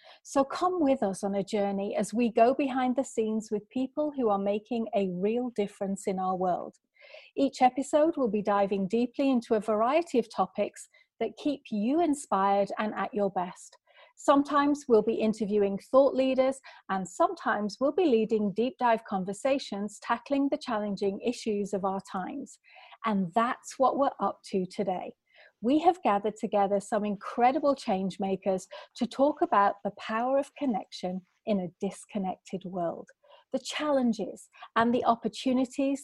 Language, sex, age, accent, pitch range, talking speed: English, female, 40-59, British, 200-265 Hz, 160 wpm